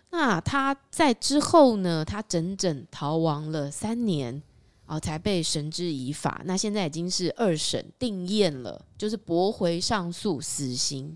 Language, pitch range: Chinese, 155-215 Hz